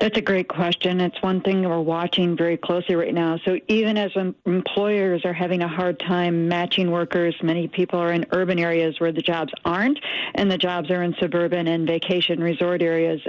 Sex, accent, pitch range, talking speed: female, American, 170-195 Hz, 200 wpm